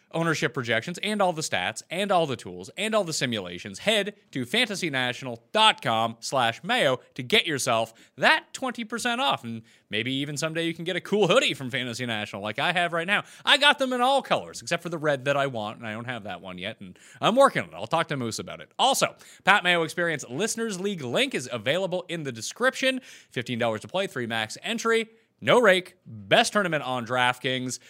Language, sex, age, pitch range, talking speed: English, male, 30-49, 130-200 Hz, 215 wpm